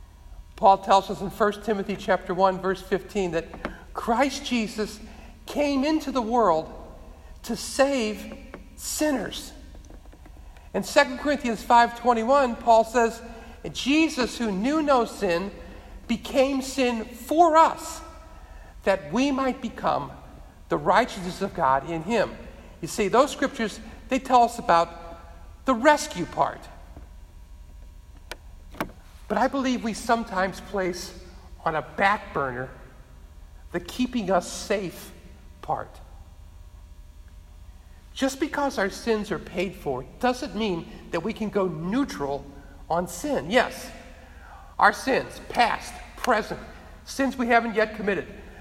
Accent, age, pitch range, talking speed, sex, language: American, 50-69, 160-245 Hz, 120 wpm, male, English